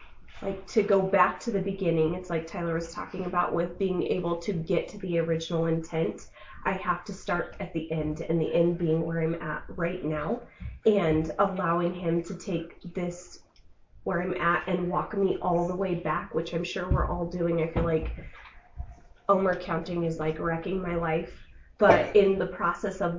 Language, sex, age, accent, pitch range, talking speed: English, female, 20-39, American, 165-190 Hz, 195 wpm